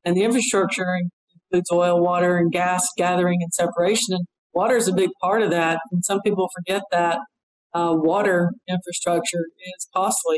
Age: 50-69